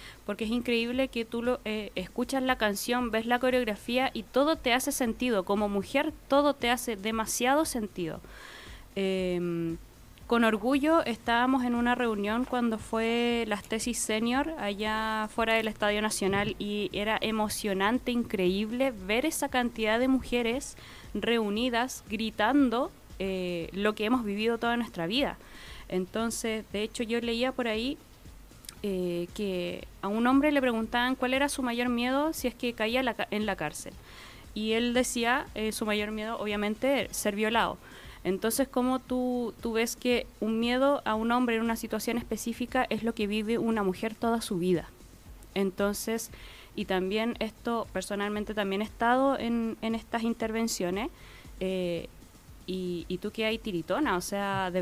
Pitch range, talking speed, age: 205-245 Hz, 160 wpm, 20-39